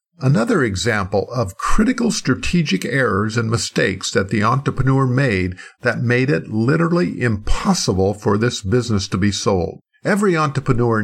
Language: English